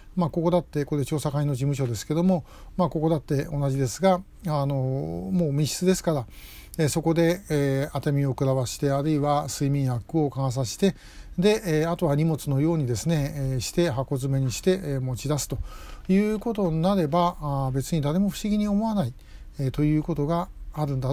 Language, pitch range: Japanese, 140-185 Hz